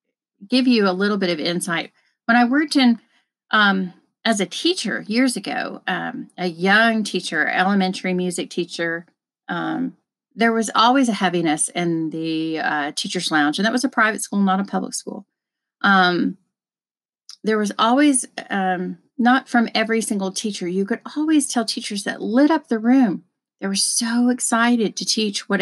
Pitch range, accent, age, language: 185-245 Hz, American, 40-59, English